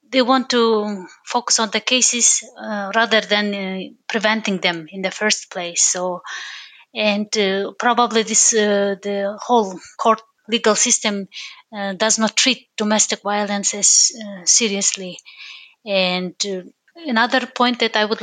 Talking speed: 145 wpm